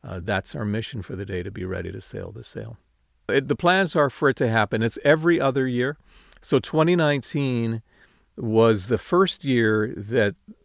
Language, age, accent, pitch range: English, 50-69, American, 105-140 Hz